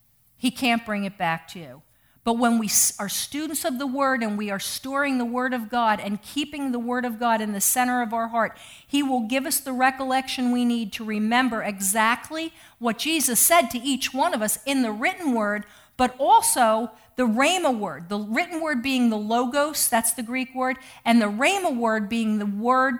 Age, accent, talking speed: 50-69, American, 210 wpm